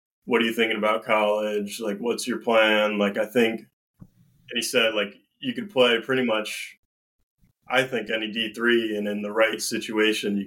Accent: American